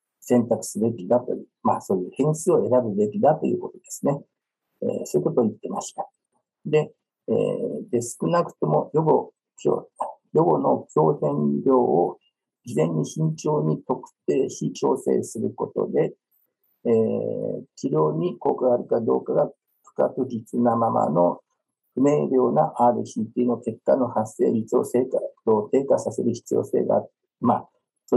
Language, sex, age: Japanese, male, 50-69